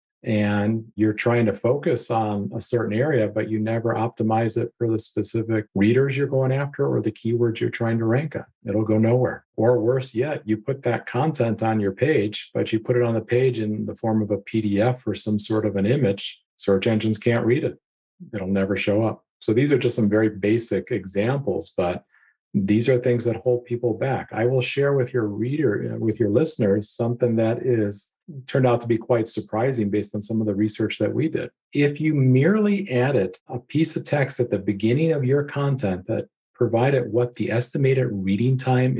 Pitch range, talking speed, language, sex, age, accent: 105-125 Hz, 205 wpm, English, male, 40-59, American